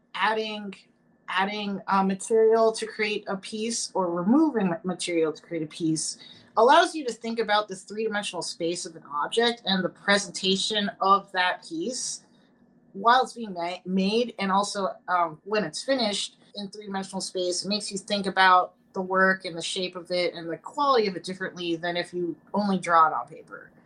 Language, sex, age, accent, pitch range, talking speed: English, female, 30-49, American, 175-220 Hz, 180 wpm